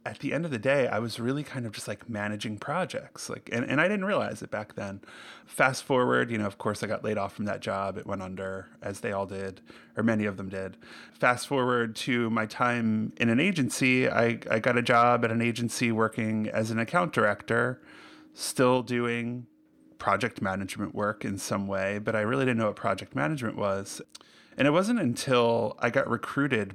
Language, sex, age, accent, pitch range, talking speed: English, male, 30-49, American, 105-125 Hz, 210 wpm